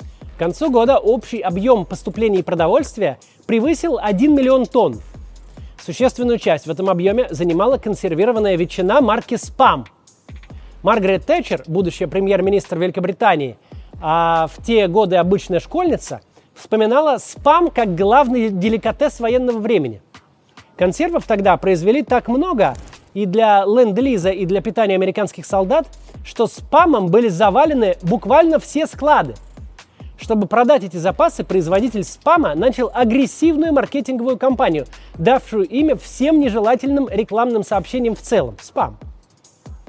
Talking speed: 120 wpm